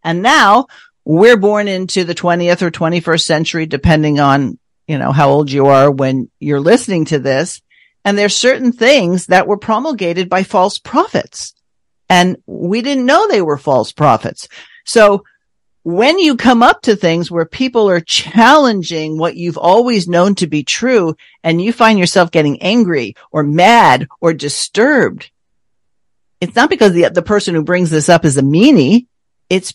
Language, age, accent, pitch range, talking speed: English, 50-69, American, 150-205 Hz, 165 wpm